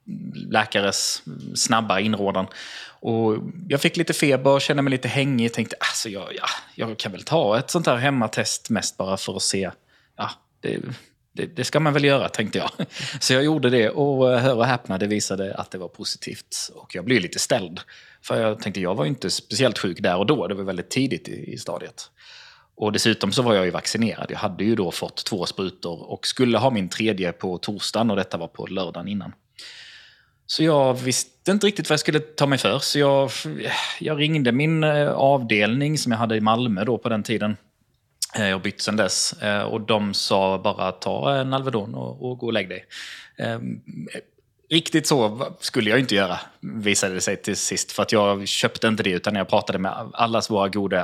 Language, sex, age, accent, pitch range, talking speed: Swedish, male, 30-49, native, 100-140 Hz, 200 wpm